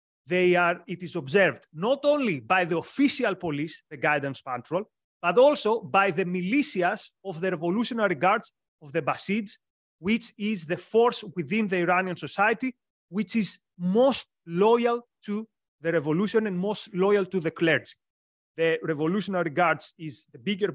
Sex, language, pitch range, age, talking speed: male, English, 160-215 Hz, 30-49, 155 wpm